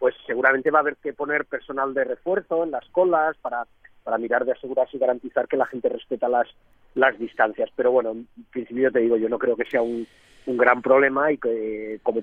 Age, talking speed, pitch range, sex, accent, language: 40-59, 220 wpm, 125-165 Hz, male, Spanish, Spanish